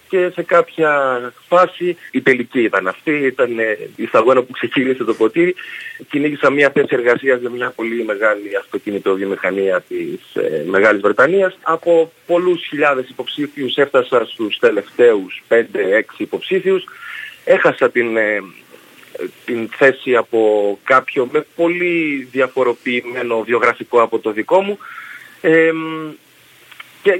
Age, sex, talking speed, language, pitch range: 30-49, male, 125 wpm, Greek, 125-195 Hz